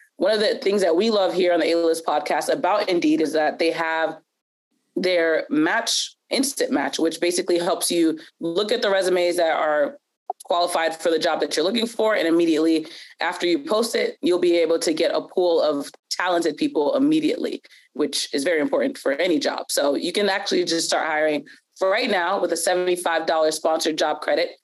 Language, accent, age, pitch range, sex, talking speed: English, American, 20-39, 165-275 Hz, female, 195 wpm